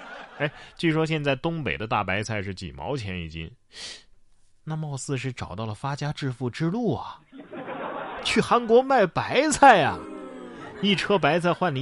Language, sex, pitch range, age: Chinese, male, 100-155 Hz, 30-49